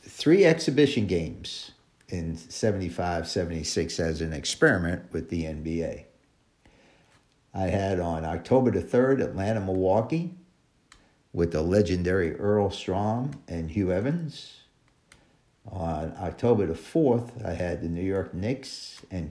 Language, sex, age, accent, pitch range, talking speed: English, male, 50-69, American, 90-130 Hz, 120 wpm